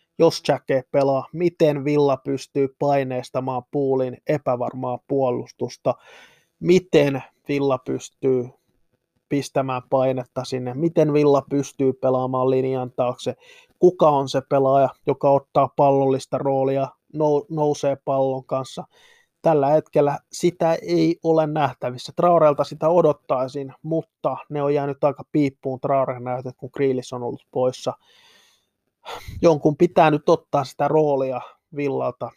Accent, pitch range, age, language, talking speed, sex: native, 130-150 Hz, 20-39, Finnish, 115 wpm, male